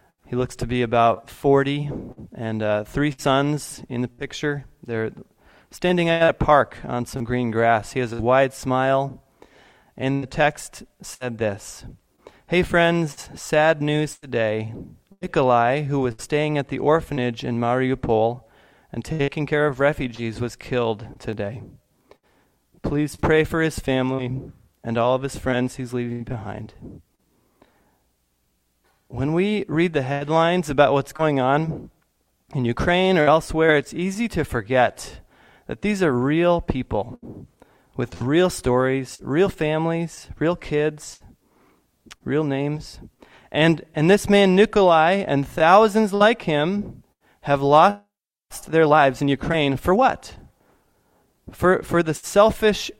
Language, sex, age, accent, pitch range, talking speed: English, male, 30-49, American, 125-160 Hz, 135 wpm